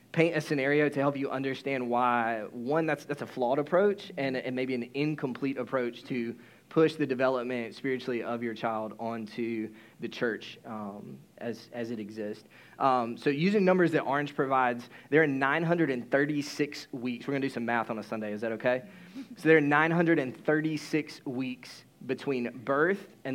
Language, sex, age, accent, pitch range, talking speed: English, male, 20-39, American, 120-145 Hz, 170 wpm